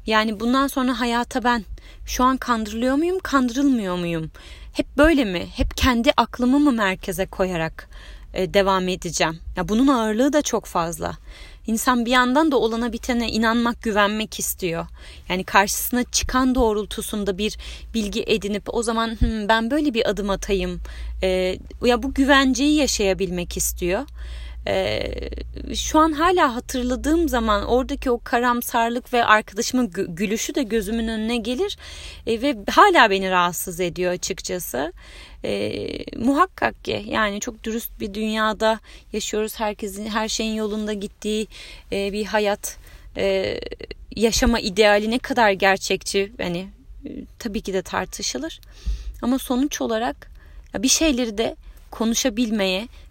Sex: female